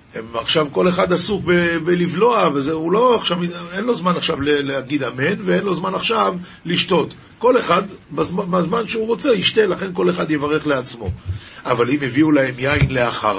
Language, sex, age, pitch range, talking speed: Hebrew, male, 50-69, 125-170 Hz, 170 wpm